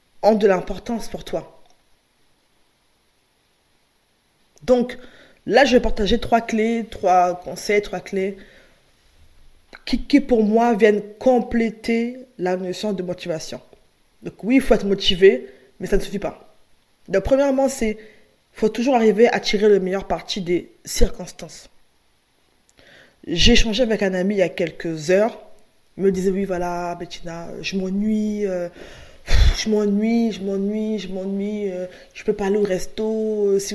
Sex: female